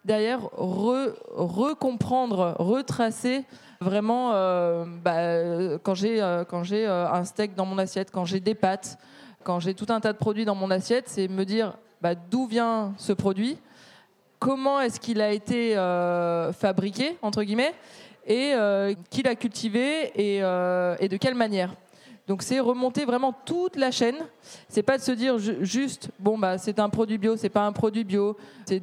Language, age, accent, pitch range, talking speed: French, 20-39, French, 190-235 Hz, 180 wpm